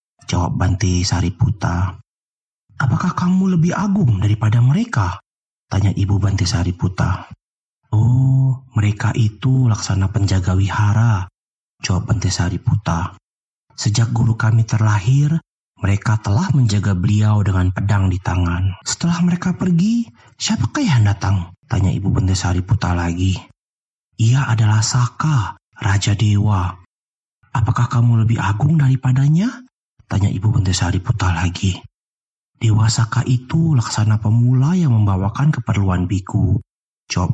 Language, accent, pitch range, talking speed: Indonesian, native, 100-125 Hz, 110 wpm